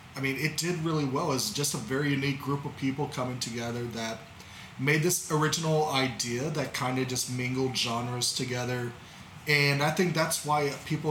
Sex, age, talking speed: male, 30-49, 190 wpm